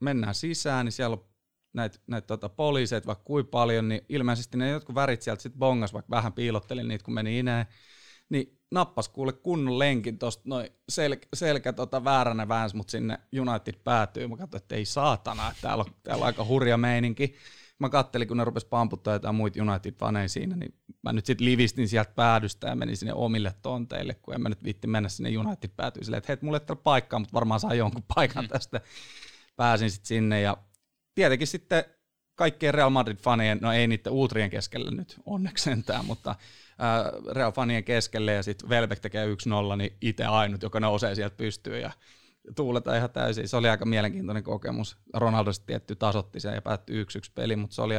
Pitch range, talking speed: 105-125 Hz, 185 wpm